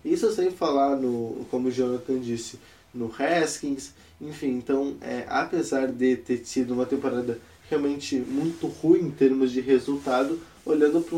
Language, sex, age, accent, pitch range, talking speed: Portuguese, male, 20-39, Brazilian, 125-165 Hz, 150 wpm